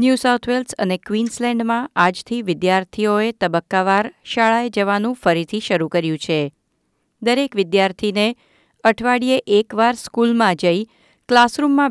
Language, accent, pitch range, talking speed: Gujarati, native, 185-240 Hz, 100 wpm